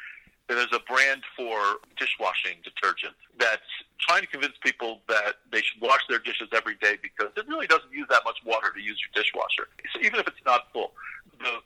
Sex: male